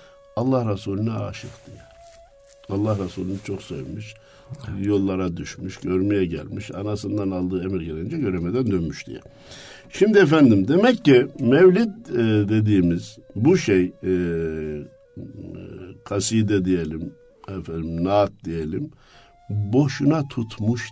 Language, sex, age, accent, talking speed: Turkish, male, 60-79, native, 100 wpm